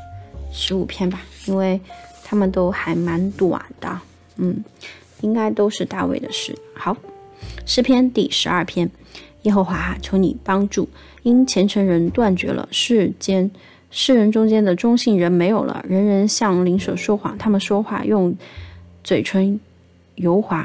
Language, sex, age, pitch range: Chinese, female, 20-39, 180-215 Hz